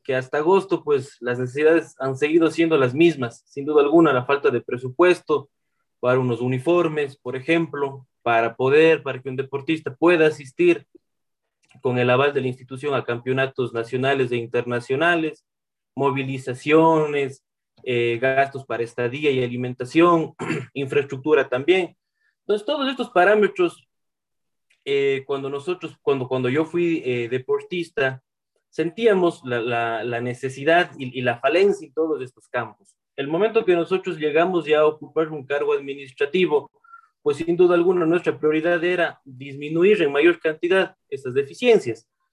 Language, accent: Spanish, Mexican